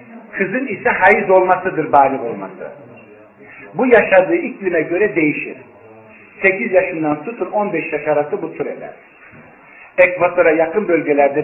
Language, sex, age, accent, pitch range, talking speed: Turkish, male, 50-69, native, 145-195 Hz, 115 wpm